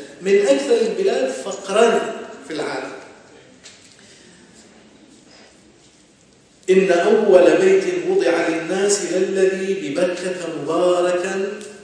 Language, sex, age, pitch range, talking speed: Arabic, male, 50-69, 165-220 Hz, 70 wpm